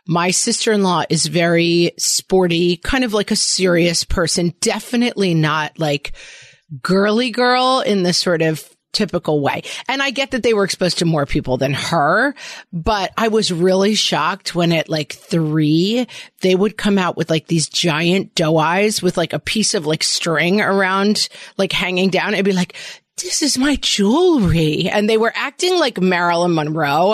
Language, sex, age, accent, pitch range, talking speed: English, female, 30-49, American, 170-230 Hz, 170 wpm